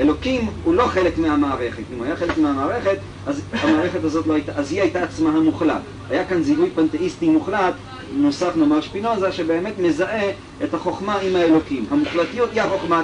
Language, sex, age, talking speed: Hebrew, male, 40-59, 170 wpm